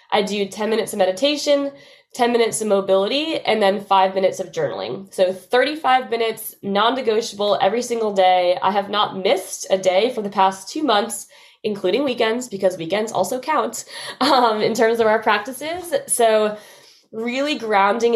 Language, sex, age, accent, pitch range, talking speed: English, female, 20-39, American, 190-235 Hz, 160 wpm